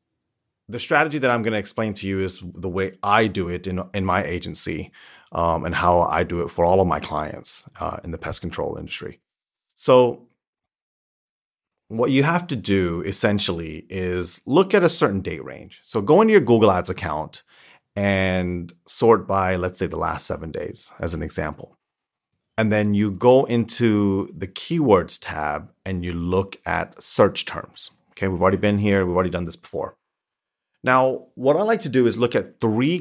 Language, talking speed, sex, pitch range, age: English, 185 wpm, male, 90-120 Hz, 30-49